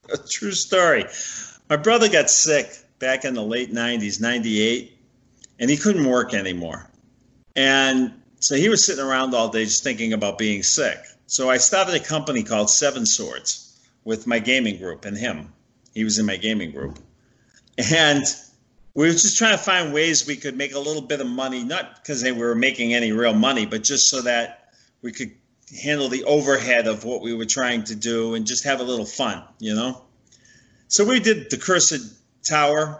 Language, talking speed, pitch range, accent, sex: English, 190 wpm, 115-140 Hz, American, male